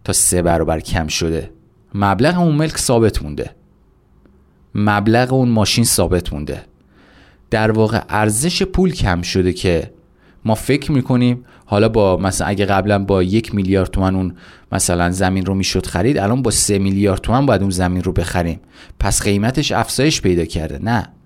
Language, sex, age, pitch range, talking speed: Persian, male, 30-49, 95-125 Hz, 160 wpm